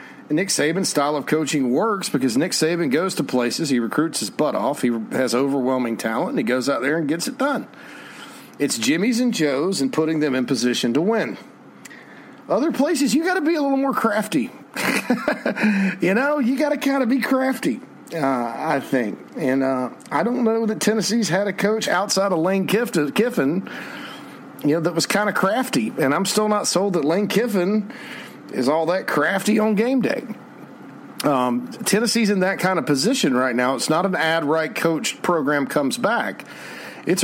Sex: male